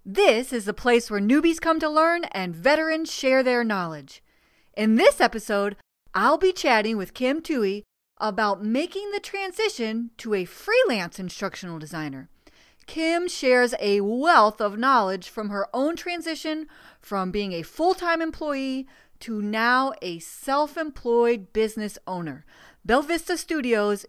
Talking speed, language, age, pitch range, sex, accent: 140 wpm, English, 40-59, 205-295 Hz, female, American